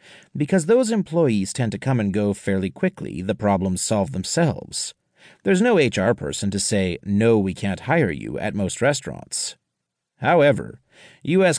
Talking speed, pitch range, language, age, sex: 155 wpm, 105-155 Hz, English, 40-59, male